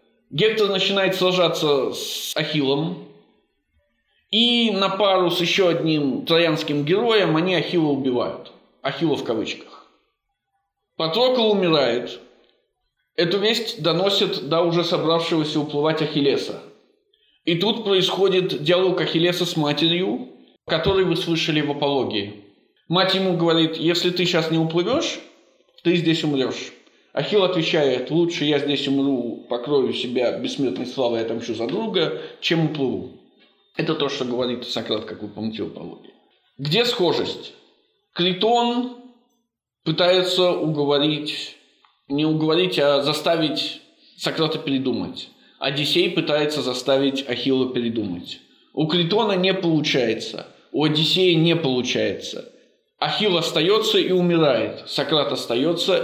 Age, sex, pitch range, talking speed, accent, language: 20-39, male, 145-190 Hz, 115 wpm, native, Russian